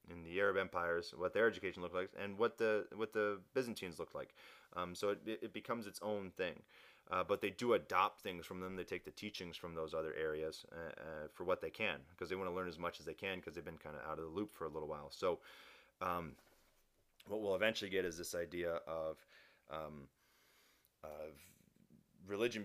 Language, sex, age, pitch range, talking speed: English, male, 30-49, 85-105 Hz, 220 wpm